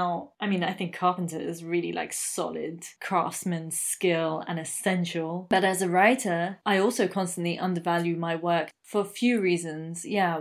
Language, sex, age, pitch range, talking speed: English, female, 20-39, 170-195 Hz, 165 wpm